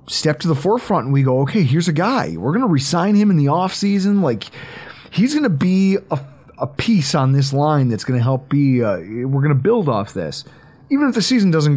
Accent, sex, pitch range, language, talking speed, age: American, male, 130-180 Hz, English, 230 wpm, 30-49